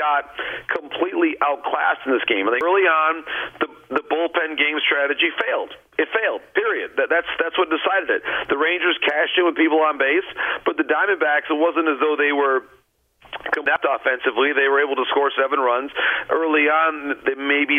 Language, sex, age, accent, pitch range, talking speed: English, male, 40-59, American, 140-165 Hz, 180 wpm